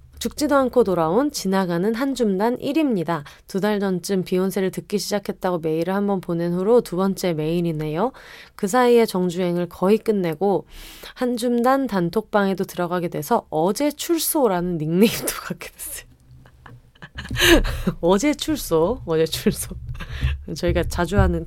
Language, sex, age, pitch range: Korean, female, 20-39, 165-230 Hz